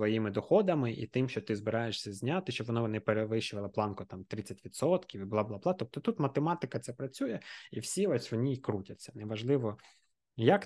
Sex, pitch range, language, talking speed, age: male, 105-125 Hz, Ukrainian, 170 wpm, 20-39